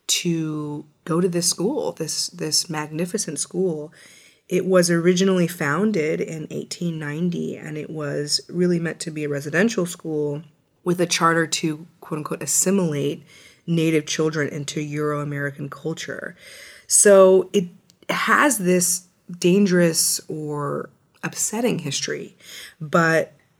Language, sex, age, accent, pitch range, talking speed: English, female, 20-39, American, 150-175 Hz, 115 wpm